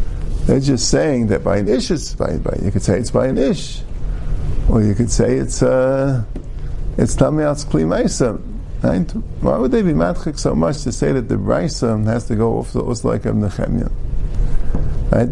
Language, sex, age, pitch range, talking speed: English, male, 50-69, 105-145 Hz, 190 wpm